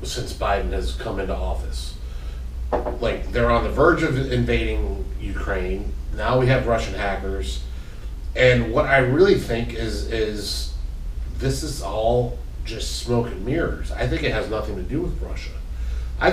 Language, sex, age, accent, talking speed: English, male, 30-49, American, 160 wpm